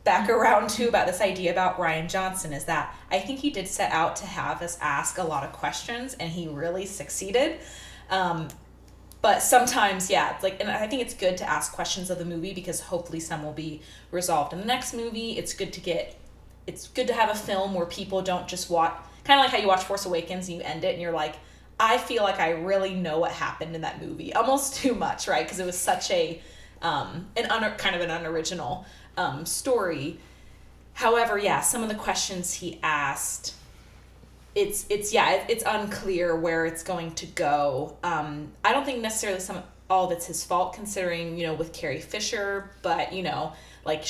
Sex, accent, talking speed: female, American, 205 wpm